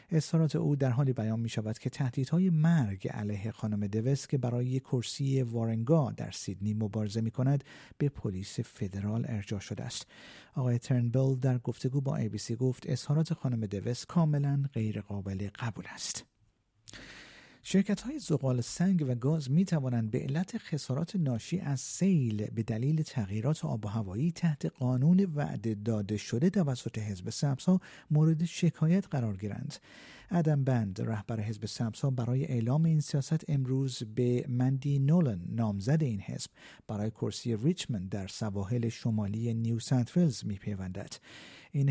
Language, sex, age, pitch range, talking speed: Persian, male, 50-69, 110-150 Hz, 145 wpm